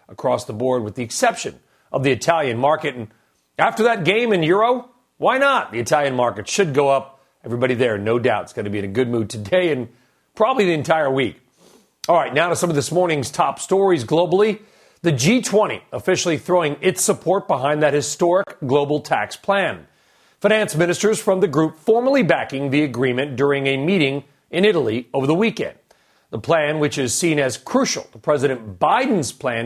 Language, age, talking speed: English, 40-59, 190 wpm